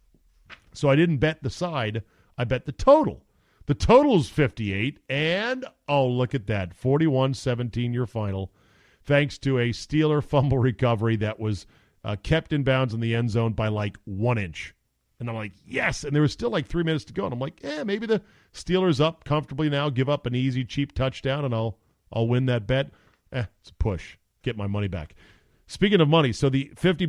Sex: male